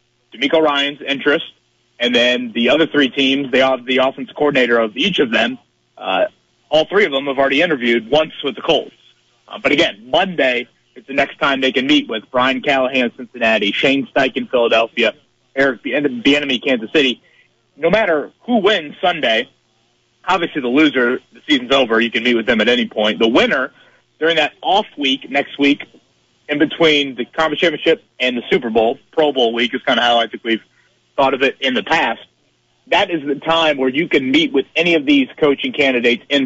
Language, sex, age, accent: English, male, 30-49, American